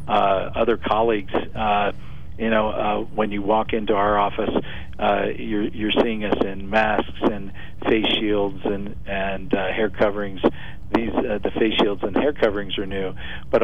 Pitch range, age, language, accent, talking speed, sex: 100-115 Hz, 50-69, English, American, 170 wpm, male